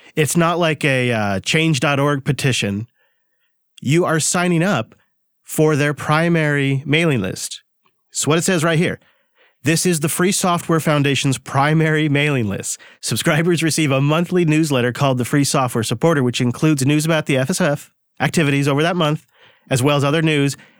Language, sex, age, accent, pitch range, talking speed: English, male, 40-59, American, 125-160 Hz, 160 wpm